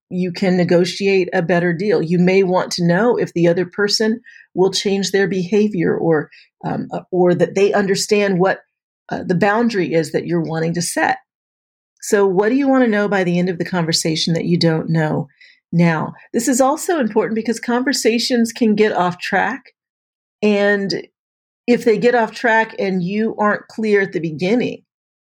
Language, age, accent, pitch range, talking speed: English, 40-59, American, 175-215 Hz, 180 wpm